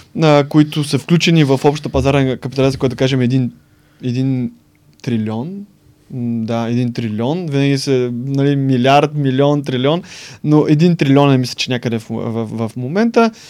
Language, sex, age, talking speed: Bulgarian, male, 20-39, 140 wpm